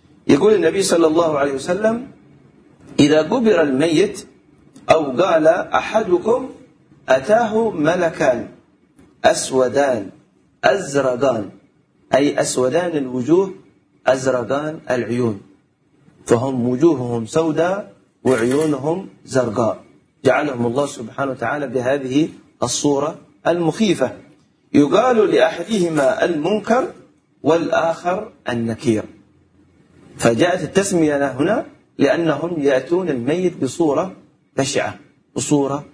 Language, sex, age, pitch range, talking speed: Arabic, male, 40-59, 130-175 Hz, 80 wpm